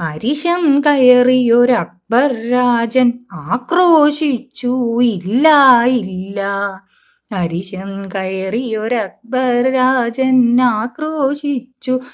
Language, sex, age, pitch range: Malayalam, female, 20-39, 205-260 Hz